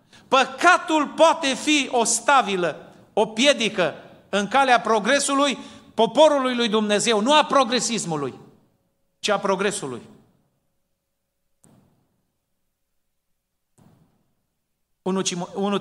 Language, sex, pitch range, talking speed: Romanian, male, 170-225 Hz, 75 wpm